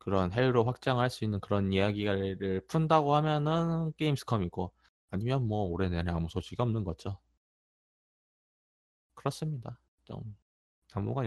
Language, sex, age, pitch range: Korean, male, 20-39, 90-115 Hz